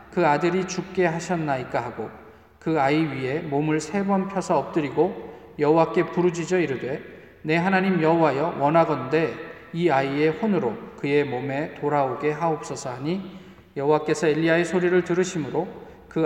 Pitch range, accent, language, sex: 125-165 Hz, native, Korean, male